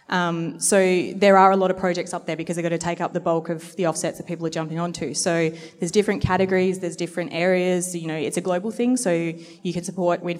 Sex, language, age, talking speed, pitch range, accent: female, English, 20-39, 255 wpm, 165-185 Hz, Australian